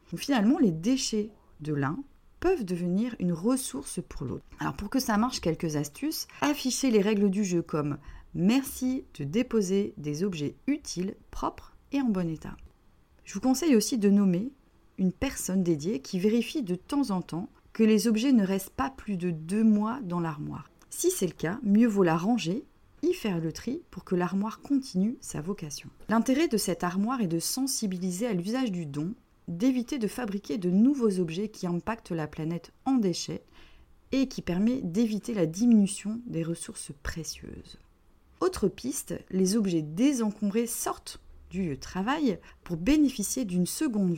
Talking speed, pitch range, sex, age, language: 170 wpm, 175-245 Hz, female, 30-49, French